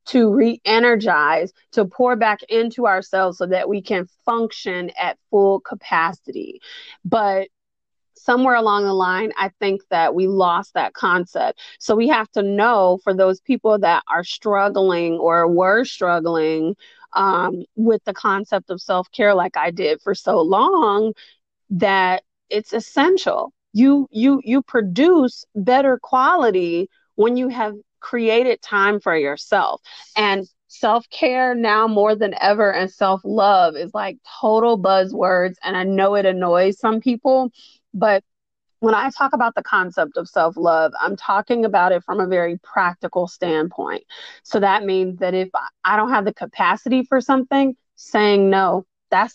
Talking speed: 145 wpm